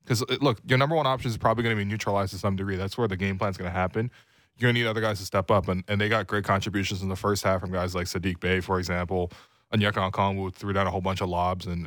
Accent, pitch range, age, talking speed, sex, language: American, 95-110 Hz, 20-39, 315 wpm, male, English